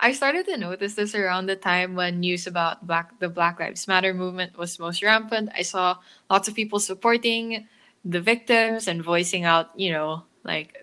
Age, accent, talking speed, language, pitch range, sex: 10-29, Filipino, 190 wpm, English, 170-215 Hz, female